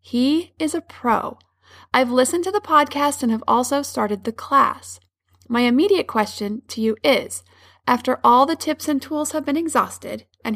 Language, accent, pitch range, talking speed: English, American, 220-275 Hz, 175 wpm